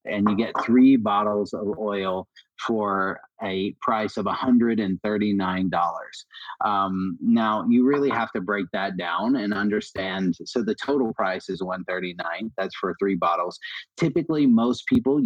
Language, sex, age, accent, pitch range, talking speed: English, male, 30-49, American, 100-130 Hz, 140 wpm